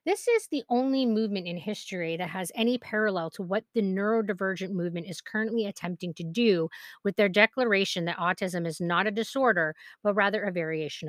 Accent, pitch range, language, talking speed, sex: American, 180-235 Hz, English, 185 wpm, female